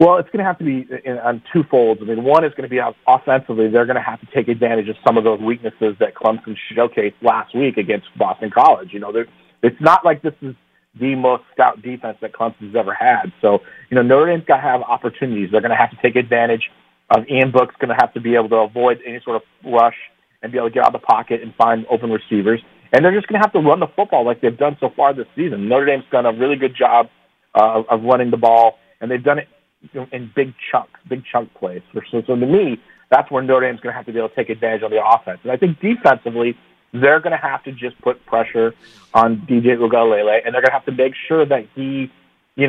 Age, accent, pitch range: 30-49, American, 115-135 Hz